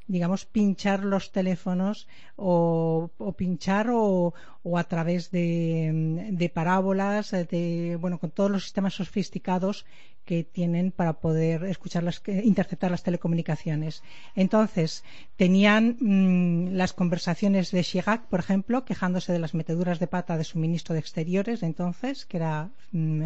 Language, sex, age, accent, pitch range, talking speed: Spanish, female, 40-59, Spanish, 170-195 Hz, 145 wpm